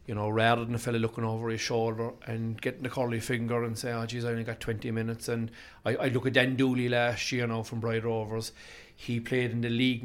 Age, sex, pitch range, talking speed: 40-59, male, 115-125 Hz, 250 wpm